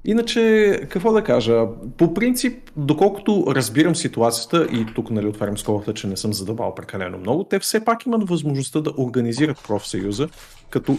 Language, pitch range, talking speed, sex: Bulgarian, 110-165 Hz, 160 wpm, male